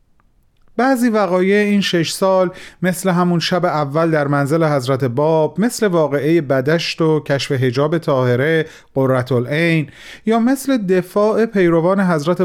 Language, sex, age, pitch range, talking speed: Persian, male, 40-59, 135-175 Hz, 130 wpm